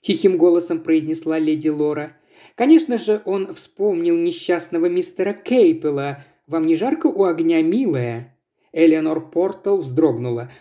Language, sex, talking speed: Russian, male, 120 wpm